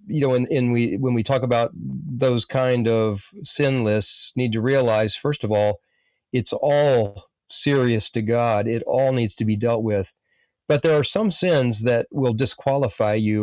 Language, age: English, 40-59